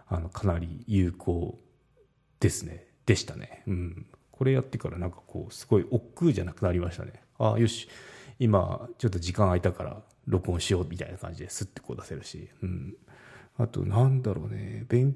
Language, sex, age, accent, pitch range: Japanese, male, 30-49, native, 95-125 Hz